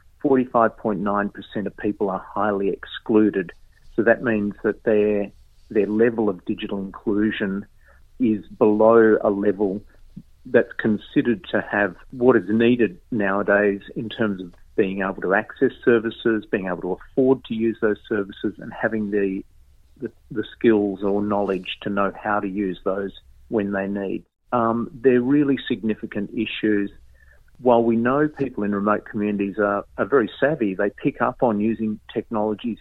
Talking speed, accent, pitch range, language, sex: 150 wpm, Australian, 100-115 Hz, English, male